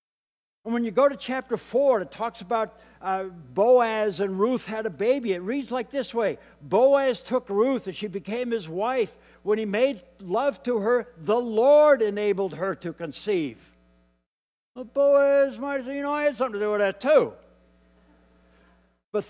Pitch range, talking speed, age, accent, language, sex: 180-240 Hz, 175 wpm, 60-79, American, English, male